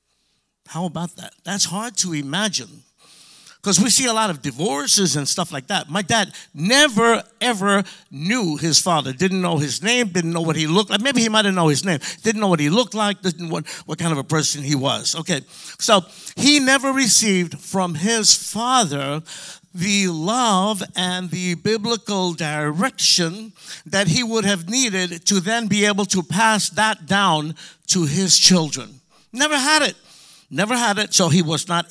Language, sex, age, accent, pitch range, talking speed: English, male, 50-69, American, 165-220 Hz, 185 wpm